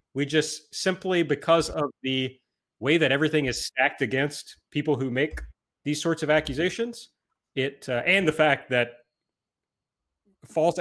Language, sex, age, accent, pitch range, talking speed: English, male, 30-49, American, 125-155 Hz, 145 wpm